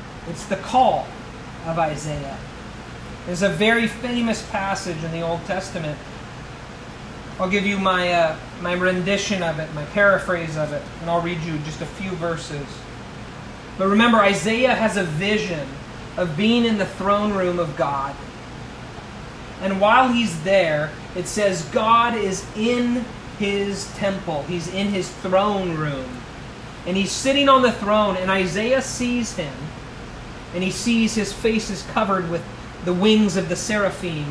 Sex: male